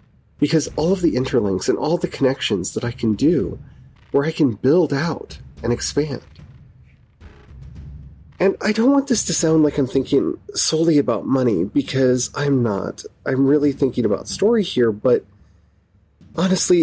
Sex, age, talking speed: male, 30-49, 155 wpm